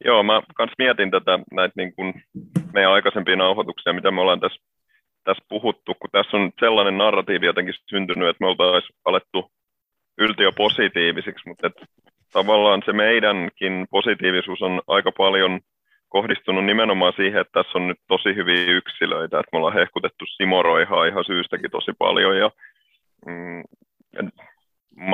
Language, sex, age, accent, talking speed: Finnish, male, 30-49, native, 140 wpm